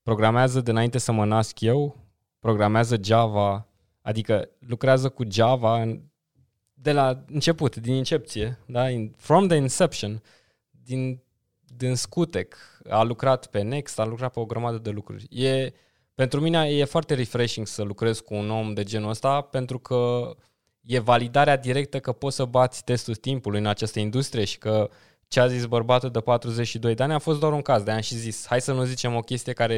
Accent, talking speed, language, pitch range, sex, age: native, 175 wpm, Romanian, 110-135 Hz, male, 20-39